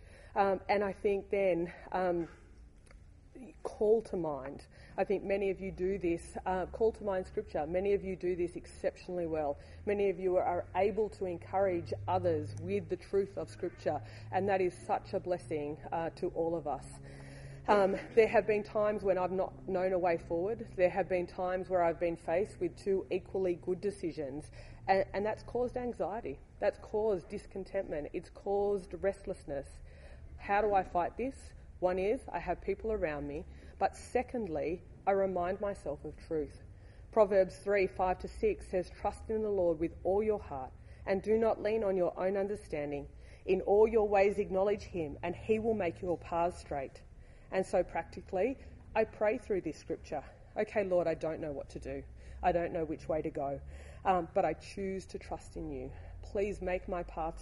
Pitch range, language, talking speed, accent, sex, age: 165-200 Hz, English, 185 wpm, Australian, female, 30-49